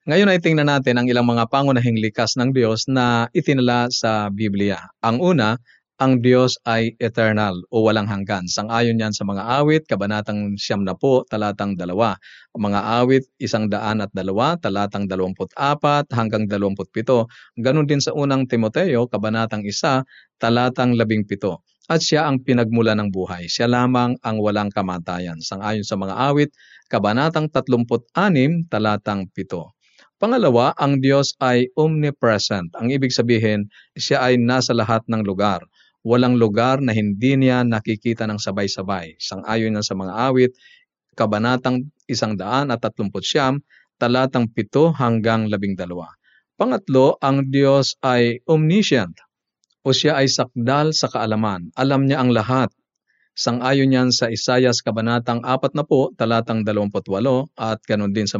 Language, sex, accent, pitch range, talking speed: Filipino, male, native, 105-130 Hz, 150 wpm